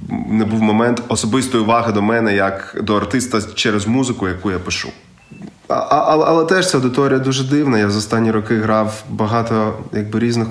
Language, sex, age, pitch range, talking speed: Ukrainian, male, 20-39, 95-110 Hz, 175 wpm